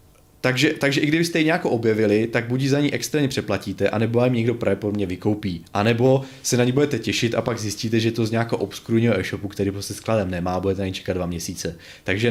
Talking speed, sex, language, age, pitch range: 220 wpm, male, Czech, 20-39, 100-120 Hz